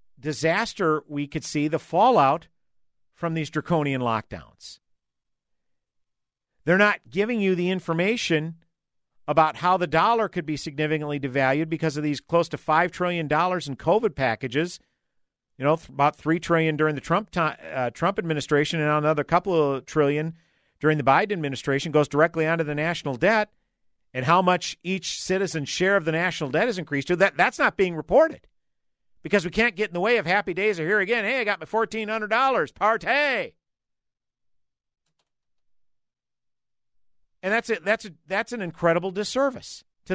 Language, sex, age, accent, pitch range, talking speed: English, male, 50-69, American, 150-195 Hz, 165 wpm